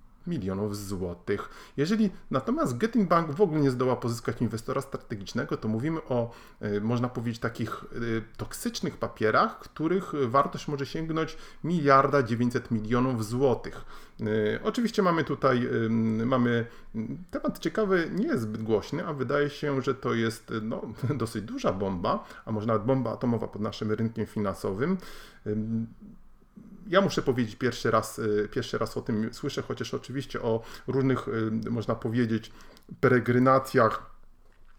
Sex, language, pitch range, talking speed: male, Polish, 110-140 Hz, 130 wpm